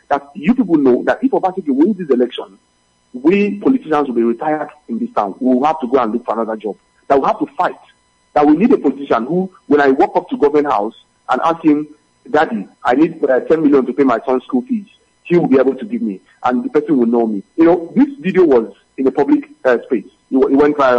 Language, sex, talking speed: English, male, 250 wpm